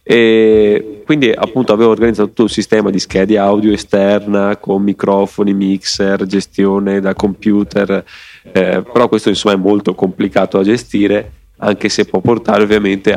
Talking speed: 145 wpm